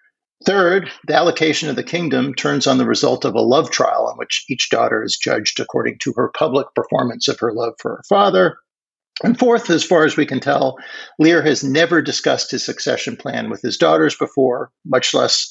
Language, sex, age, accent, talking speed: English, male, 50-69, American, 200 wpm